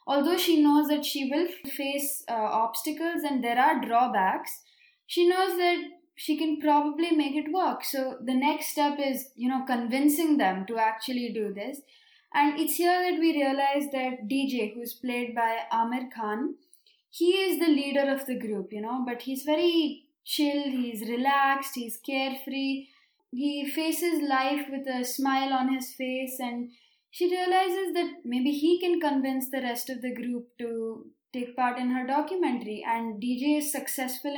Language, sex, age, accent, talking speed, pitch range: English, female, 20-39, Indian, 170 wpm, 240-300 Hz